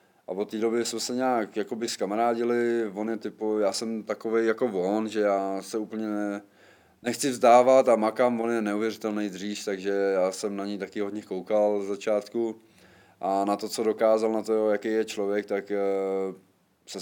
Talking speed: 170 wpm